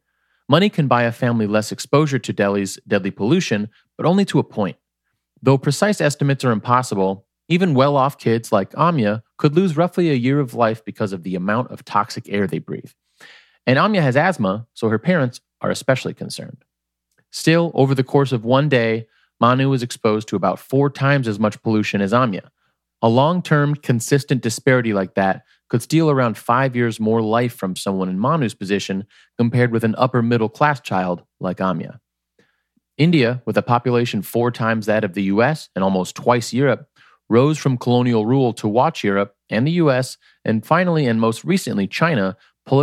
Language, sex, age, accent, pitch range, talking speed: English, male, 30-49, American, 105-140 Hz, 180 wpm